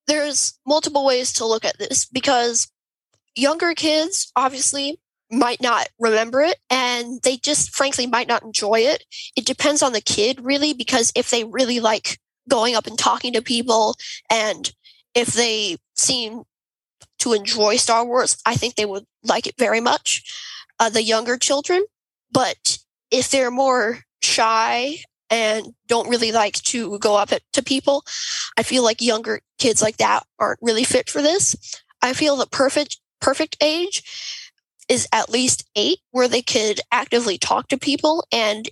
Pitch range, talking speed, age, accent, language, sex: 225-275 Hz, 165 wpm, 10-29, American, English, female